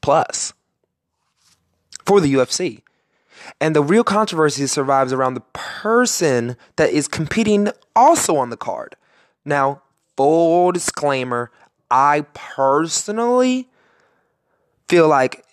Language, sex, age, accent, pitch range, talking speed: English, male, 20-39, American, 120-175 Hz, 100 wpm